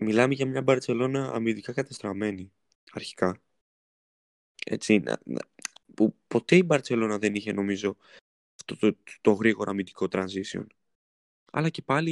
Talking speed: 120 wpm